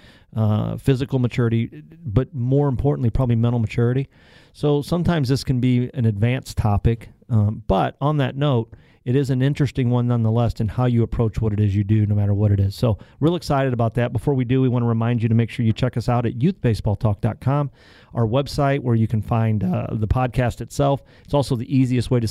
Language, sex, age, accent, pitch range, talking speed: English, male, 40-59, American, 110-130 Hz, 215 wpm